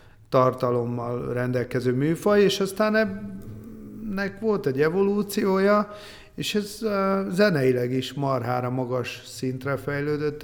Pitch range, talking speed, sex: 125-150 Hz, 105 wpm, male